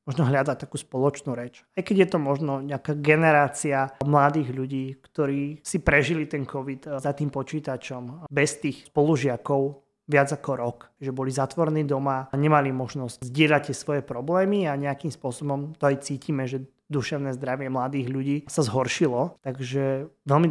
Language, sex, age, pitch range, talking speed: Slovak, male, 20-39, 130-150 Hz, 160 wpm